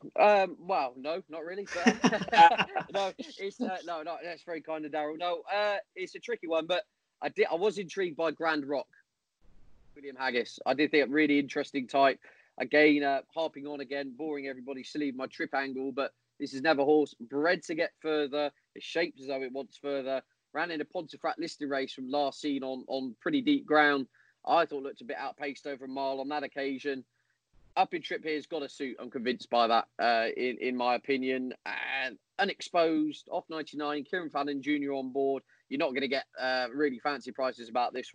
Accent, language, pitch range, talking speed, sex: British, English, 130-160 Hz, 205 wpm, male